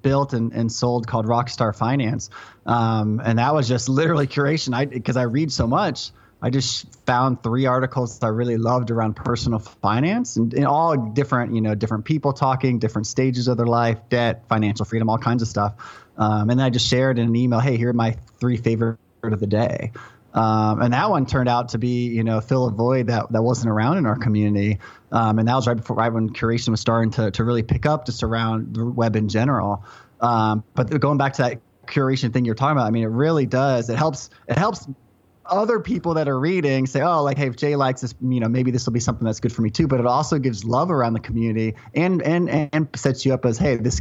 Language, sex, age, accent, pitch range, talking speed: English, male, 20-39, American, 115-135 Hz, 240 wpm